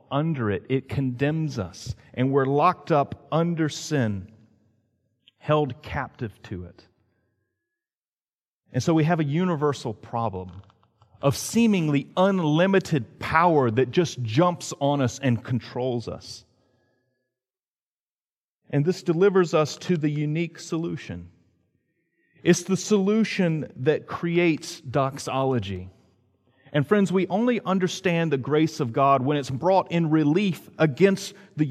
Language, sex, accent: English, male, American